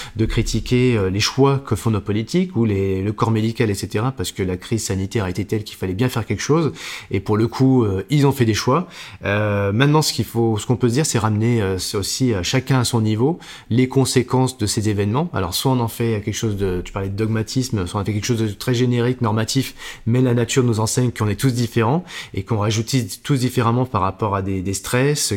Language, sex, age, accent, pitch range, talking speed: French, male, 20-39, French, 100-125 Hz, 240 wpm